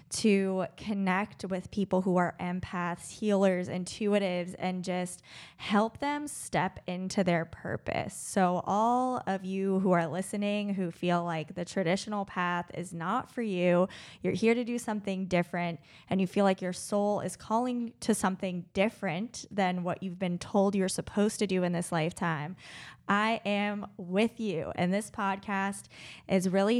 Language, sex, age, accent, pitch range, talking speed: English, female, 20-39, American, 180-215 Hz, 160 wpm